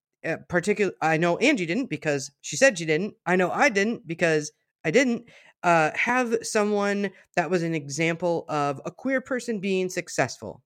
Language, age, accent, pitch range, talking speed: English, 30-49, American, 150-210 Hz, 175 wpm